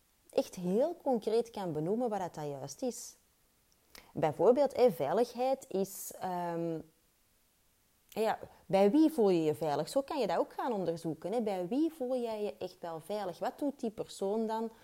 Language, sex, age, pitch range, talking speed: Dutch, female, 30-49, 150-215 Hz, 160 wpm